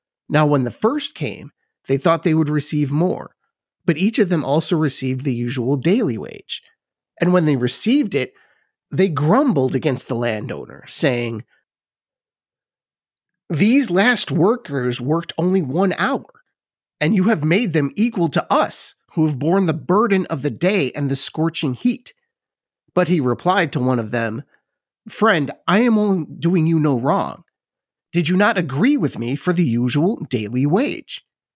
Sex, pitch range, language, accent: male, 135-190 Hz, English, American